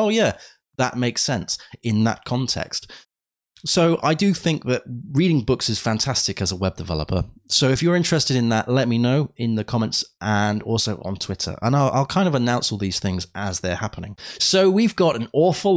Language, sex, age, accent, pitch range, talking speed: English, male, 20-39, British, 105-135 Hz, 205 wpm